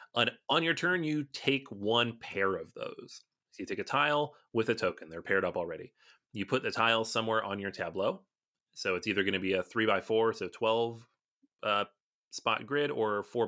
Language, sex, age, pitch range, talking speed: English, male, 30-49, 100-130 Hz, 200 wpm